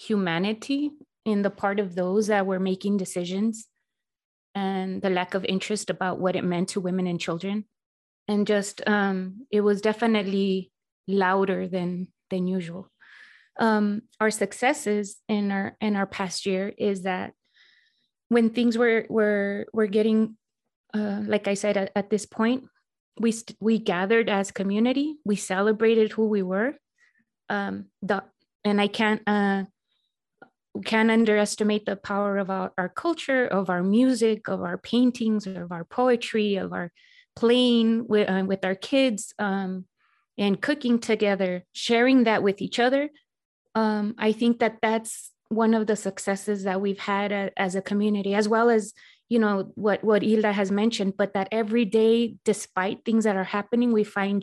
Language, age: English, 20-39